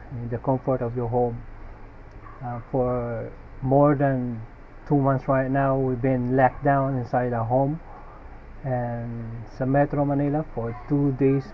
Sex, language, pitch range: male, English, 110-140 Hz